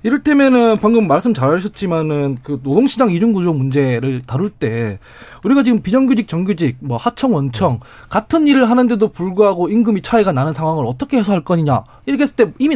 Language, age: Korean, 20-39